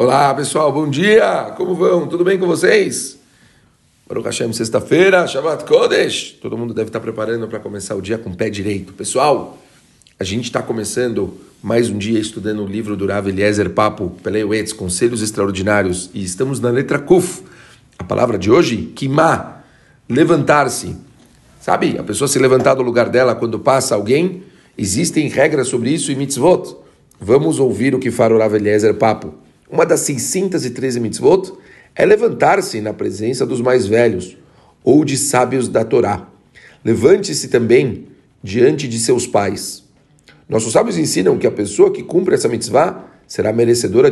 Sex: male